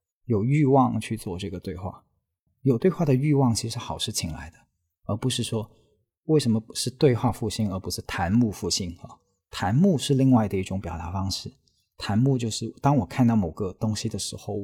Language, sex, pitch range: Chinese, male, 95-125 Hz